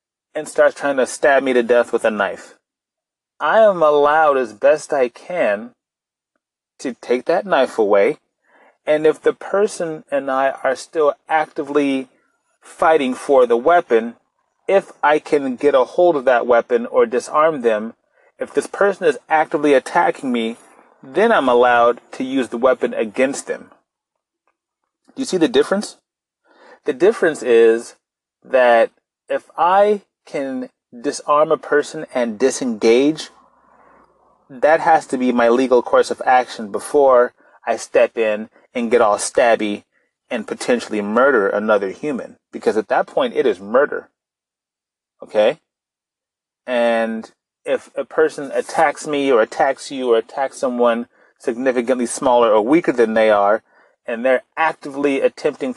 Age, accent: 30-49, American